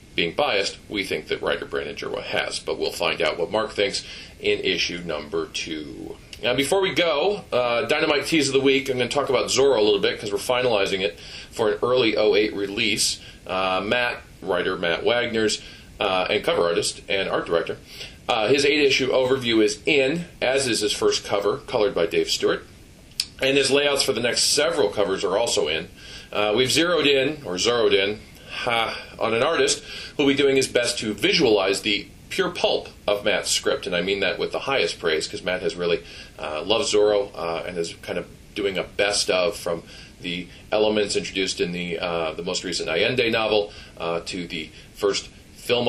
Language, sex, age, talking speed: English, male, 40-59, 200 wpm